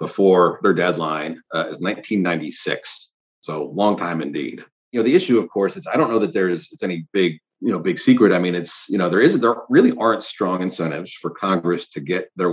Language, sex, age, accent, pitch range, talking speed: English, male, 40-59, American, 85-95 Hz, 225 wpm